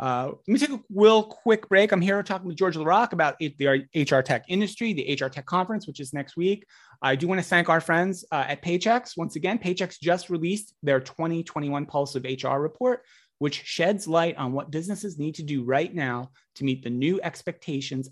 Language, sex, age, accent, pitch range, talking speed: English, male, 30-49, American, 135-185 Hz, 210 wpm